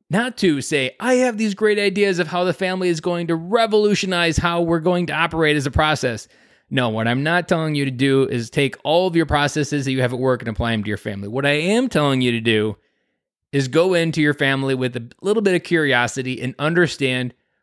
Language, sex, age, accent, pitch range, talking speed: English, male, 20-39, American, 125-170 Hz, 235 wpm